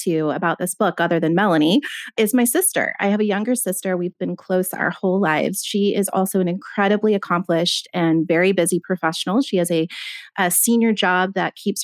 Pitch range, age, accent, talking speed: 170-205 Hz, 30-49, American, 195 wpm